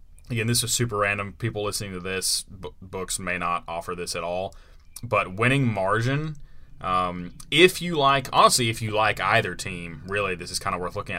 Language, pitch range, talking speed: English, 90-125 Hz, 200 wpm